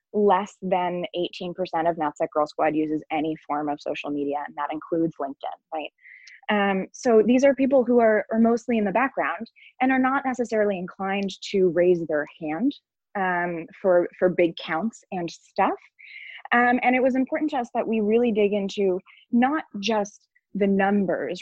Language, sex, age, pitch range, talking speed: English, female, 20-39, 170-225 Hz, 175 wpm